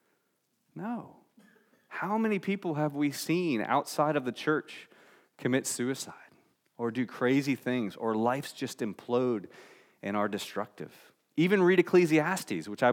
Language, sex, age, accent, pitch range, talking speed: English, male, 30-49, American, 115-155 Hz, 135 wpm